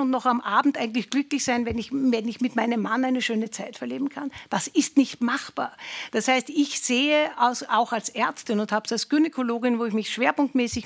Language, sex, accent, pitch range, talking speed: German, female, Austrian, 235-300 Hz, 220 wpm